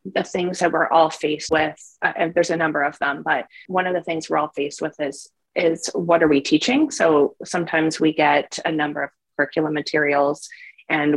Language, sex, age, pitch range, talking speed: English, female, 30-49, 155-185 Hz, 210 wpm